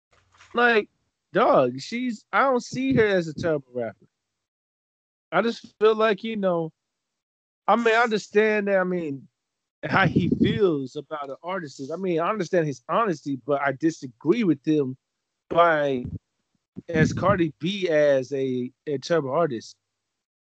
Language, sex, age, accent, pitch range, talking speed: English, male, 20-39, American, 140-195 Hz, 150 wpm